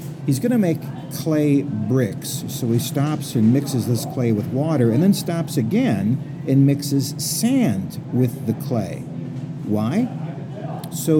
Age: 50-69